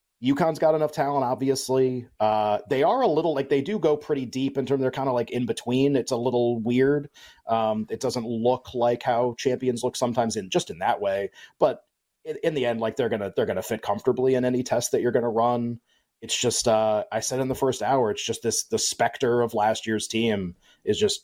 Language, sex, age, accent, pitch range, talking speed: English, male, 30-49, American, 115-140 Hz, 230 wpm